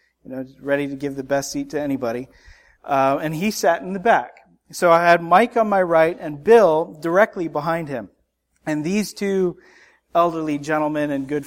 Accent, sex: American, male